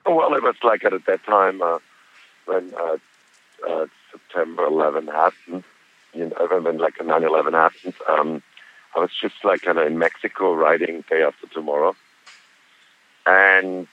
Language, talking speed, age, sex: English, 155 wpm, 60-79, male